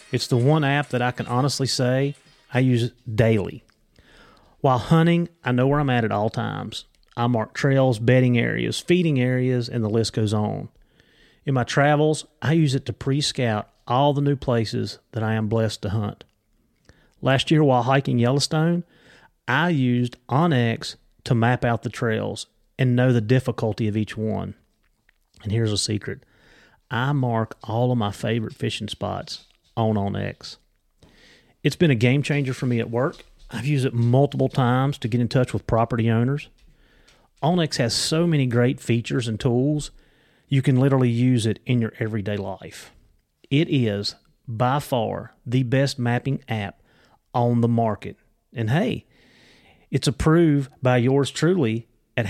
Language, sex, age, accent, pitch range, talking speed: English, male, 30-49, American, 115-140 Hz, 165 wpm